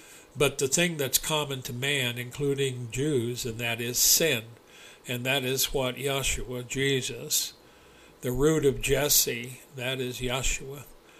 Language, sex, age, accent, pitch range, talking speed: English, male, 60-79, American, 125-145 Hz, 140 wpm